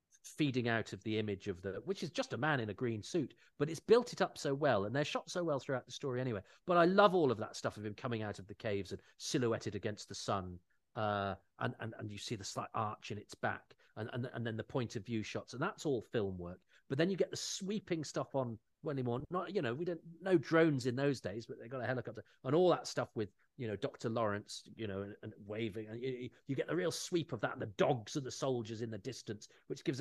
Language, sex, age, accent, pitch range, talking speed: English, male, 40-59, British, 110-150 Hz, 270 wpm